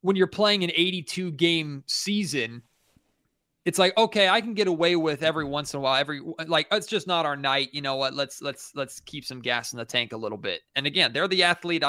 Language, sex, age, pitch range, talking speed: English, male, 30-49, 140-190 Hz, 235 wpm